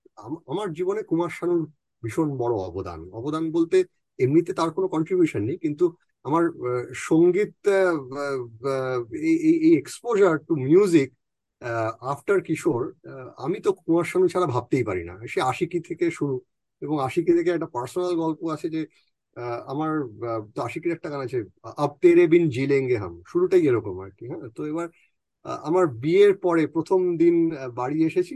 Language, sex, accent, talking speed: Bengali, male, native, 100 wpm